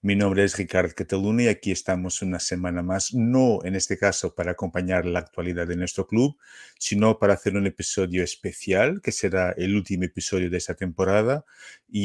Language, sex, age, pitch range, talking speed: Spanish, male, 50-69, 90-105 Hz, 185 wpm